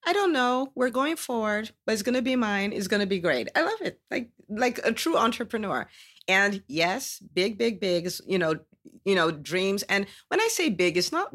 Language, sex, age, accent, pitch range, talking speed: English, female, 40-59, American, 145-195 Hz, 220 wpm